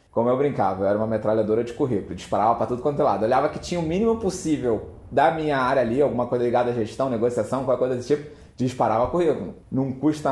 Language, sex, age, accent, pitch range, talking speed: Portuguese, male, 20-39, Brazilian, 110-150 Hz, 235 wpm